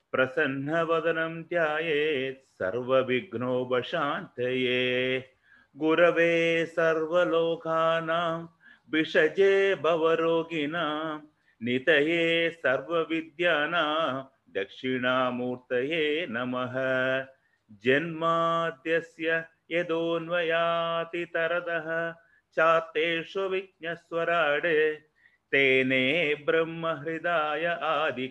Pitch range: 135-165 Hz